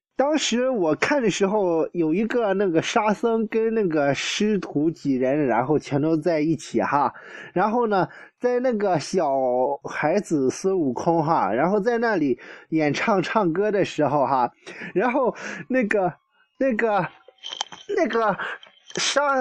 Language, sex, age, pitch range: Chinese, male, 20-39, 165-250 Hz